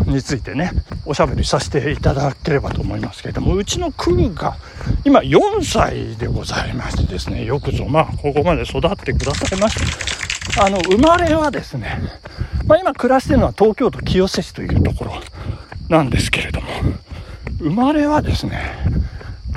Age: 60-79